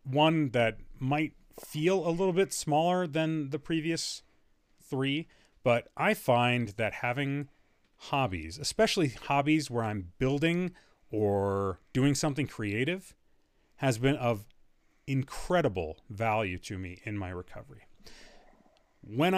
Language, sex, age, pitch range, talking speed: English, male, 30-49, 105-150 Hz, 120 wpm